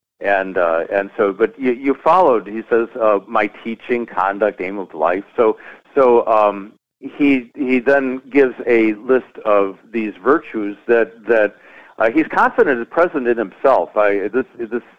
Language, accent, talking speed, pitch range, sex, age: English, American, 165 wpm, 95-120 Hz, male, 50-69